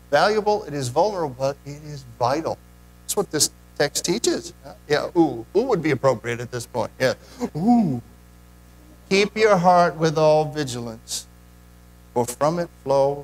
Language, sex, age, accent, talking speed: English, male, 50-69, American, 155 wpm